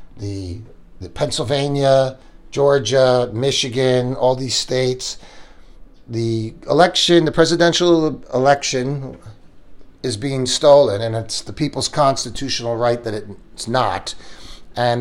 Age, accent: 50-69, American